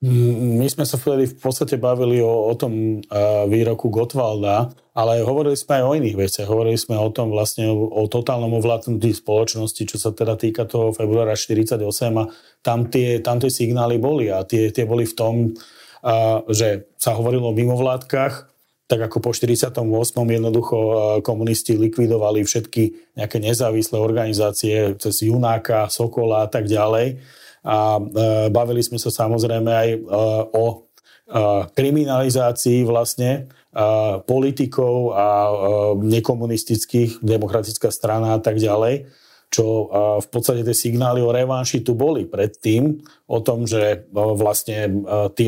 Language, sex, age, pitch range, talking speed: Slovak, male, 40-59, 110-125 Hz, 140 wpm